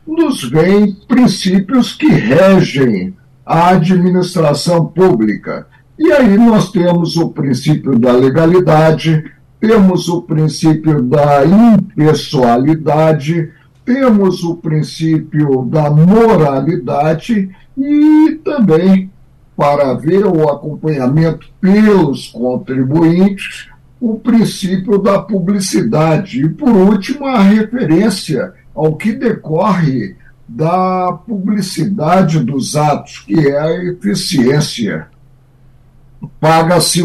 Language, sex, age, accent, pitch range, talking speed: Portuguese, male, 60-79, Brazilian, 150-200 Hz, 90 wpm